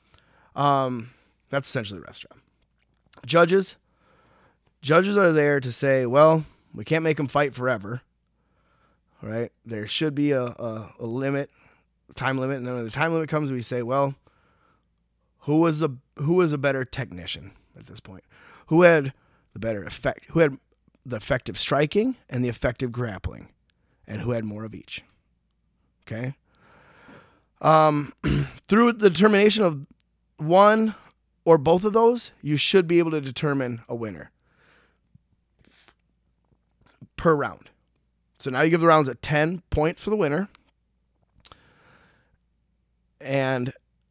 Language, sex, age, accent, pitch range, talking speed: English, male, 20-39, American, 105-155 Hz, 145 wpm